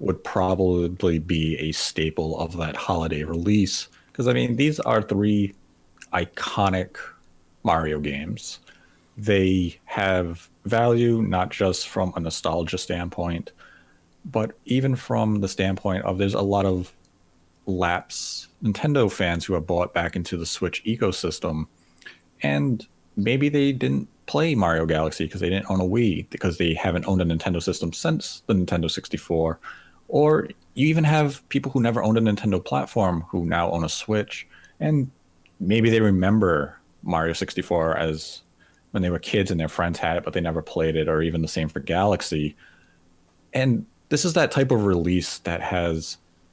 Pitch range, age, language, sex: 85-105 Hz, 30-49, English, male